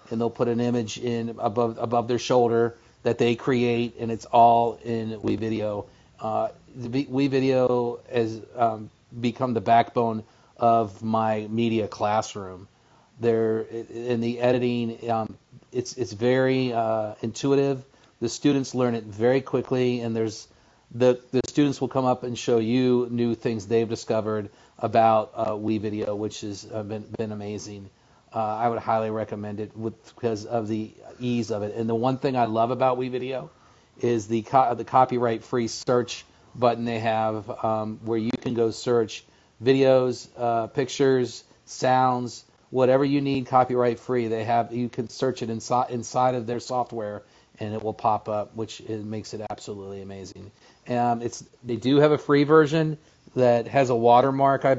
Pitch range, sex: 110-125 Hz, male